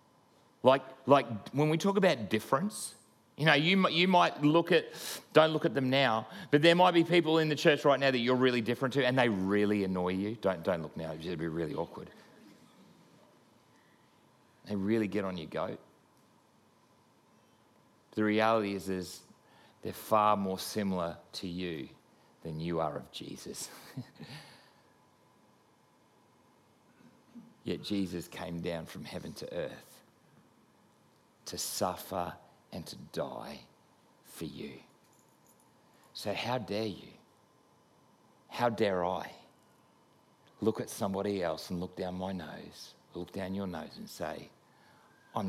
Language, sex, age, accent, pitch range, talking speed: English, male, 40-59, Australian, 95-135 Hz, 140 wpm